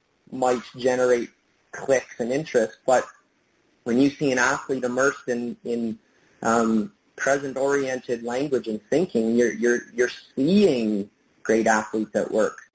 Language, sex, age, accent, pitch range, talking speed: English, male, 30-49, American, 120-145 Hz, 125 wpm